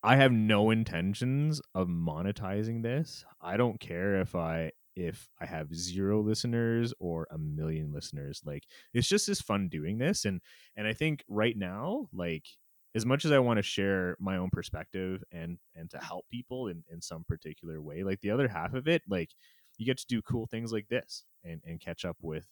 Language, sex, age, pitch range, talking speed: English, male, 30-49, 85-115 Hz, 200 wpm